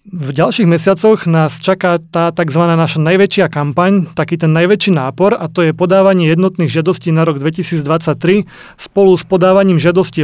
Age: 30-49